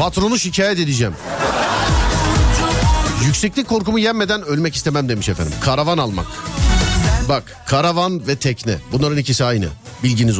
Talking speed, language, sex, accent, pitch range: 115 wpm, Turkish, male, native, 115-190 Hz